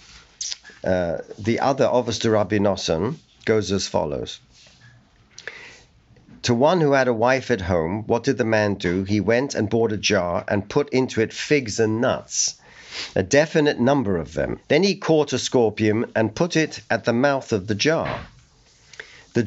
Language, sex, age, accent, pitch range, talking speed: English, male, 50-69, British, 100-135 Hz, 165 wpm